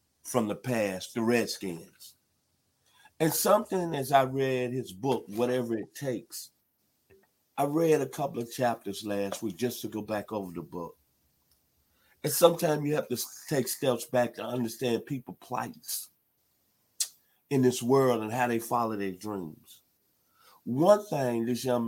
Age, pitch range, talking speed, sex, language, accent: 50-69, 110-135 Hz, 150 wpm, male, English, American